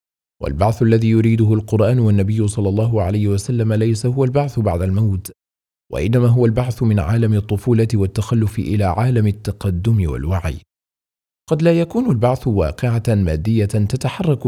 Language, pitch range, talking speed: Arabic, 90-115 Hz, 135 wpm